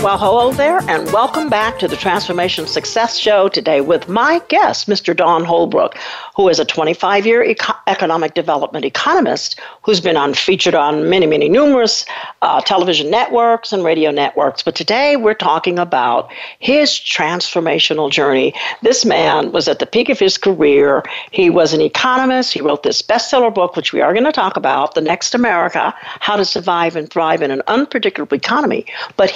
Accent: American